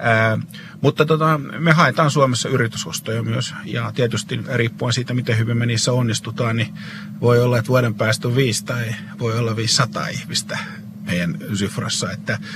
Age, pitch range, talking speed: 50-69, 110-140 Hz, 160 wpm